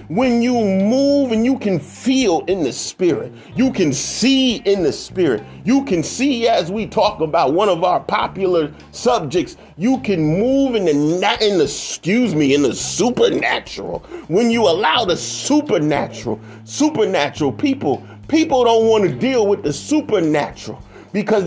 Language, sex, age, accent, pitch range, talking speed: English, male, 30-49, American, 155-255 Hz, 155 wpm